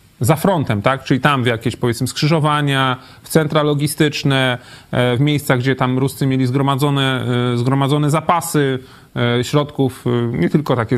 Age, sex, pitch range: 30-49, male, 125-145 Hz